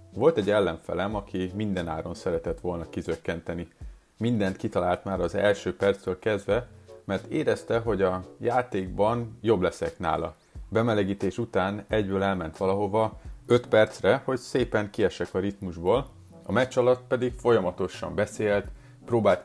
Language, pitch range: Hungarian, 95-115 Hz